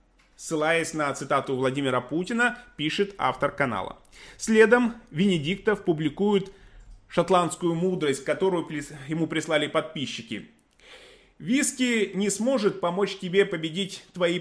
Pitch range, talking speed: 145-195 Hz, 100 wpm